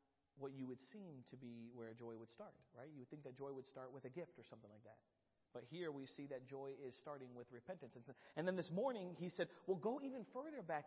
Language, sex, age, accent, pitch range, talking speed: English, male, 30-49, American, 120-175 Hz, 255 wpm